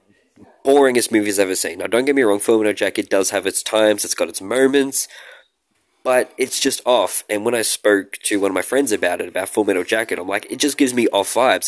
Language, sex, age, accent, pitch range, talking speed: English, male, 20-39, Australian, 100-135 Hz, 240 wpm